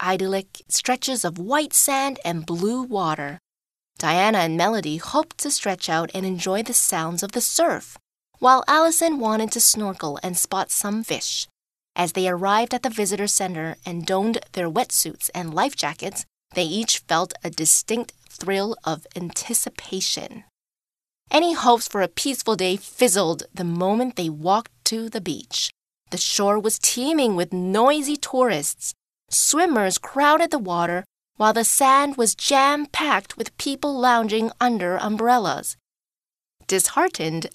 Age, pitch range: 20-39, 180-255 Hz